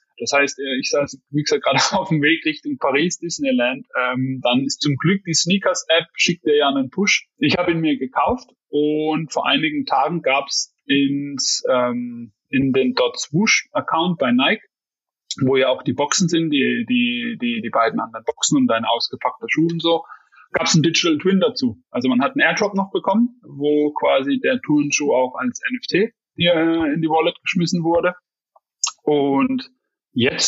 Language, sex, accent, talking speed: German, male, German, 180 wpm